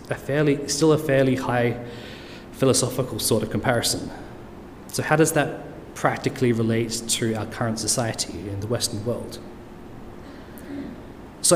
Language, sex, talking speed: English, male, 130 wpm